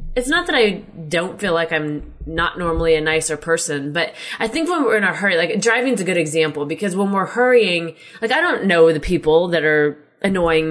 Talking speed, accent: 220 wpm, American